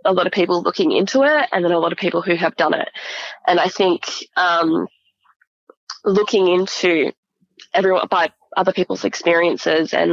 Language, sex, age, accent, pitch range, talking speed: English, female, 20-39, Australian, 170-190 Hz, 170 wpm